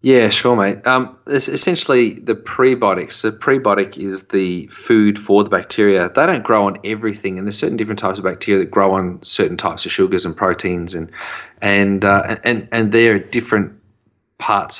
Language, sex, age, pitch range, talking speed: English, male, 30-49, 95-110 Hz, 190 wpm